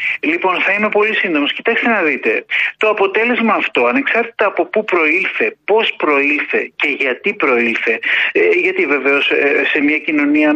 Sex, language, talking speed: male, Greek, 140 wpm